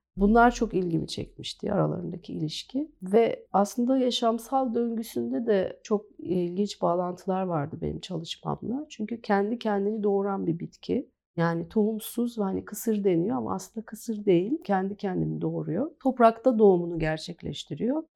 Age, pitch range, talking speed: 40-59, 175-230 Hz, 125 wpm